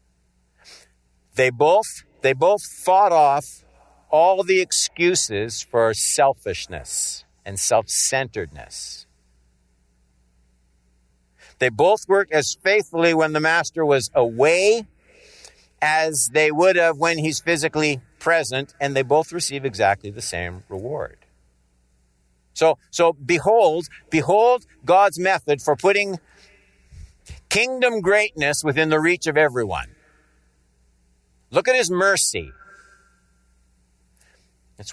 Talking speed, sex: 105 wpm, male